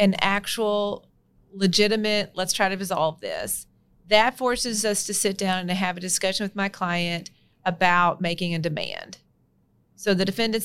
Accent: American